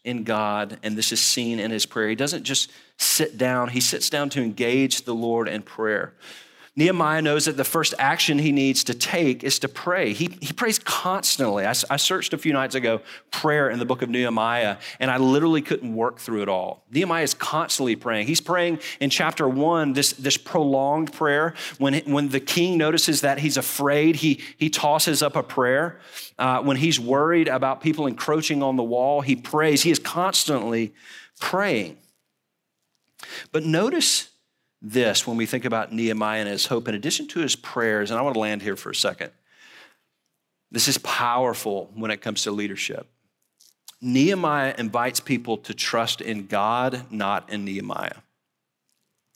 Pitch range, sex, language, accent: 115-155 Hz, male, English, American